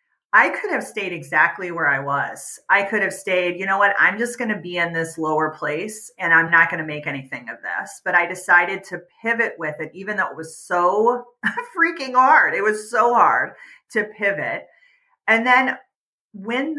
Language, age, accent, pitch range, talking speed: English, 30-49, American, 165-225 Hz, 200 wpm